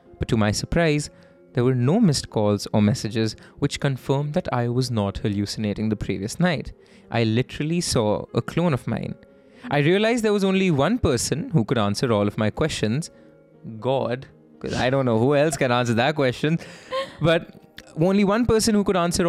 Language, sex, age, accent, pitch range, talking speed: English, male, 20-39, Indian, 115-170 Hz, 185 wpm